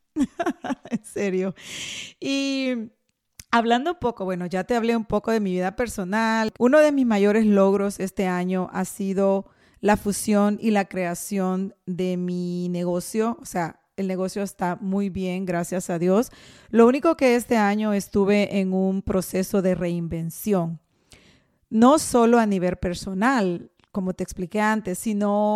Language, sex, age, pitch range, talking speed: Spanish, female, 40-59, 185-220 Hz, 150 wpm